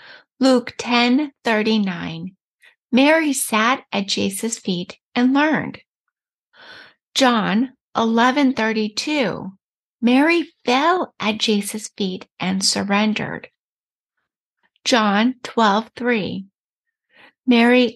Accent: American